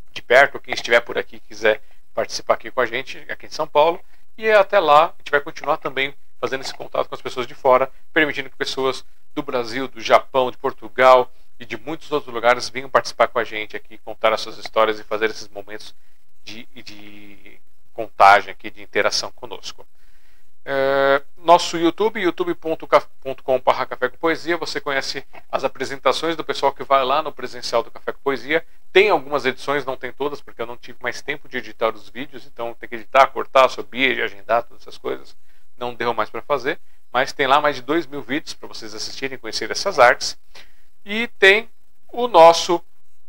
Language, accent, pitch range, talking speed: Portuguese, Brazilian, 120-155 Hz, 190 wpm